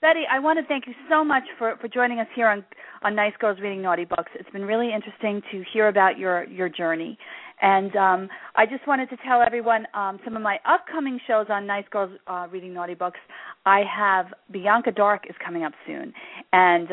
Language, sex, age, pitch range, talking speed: English, female, 40-59, 180-230 Hz, 215 wpm